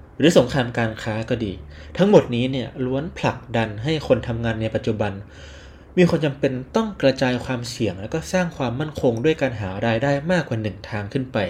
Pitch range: 110-135 Hz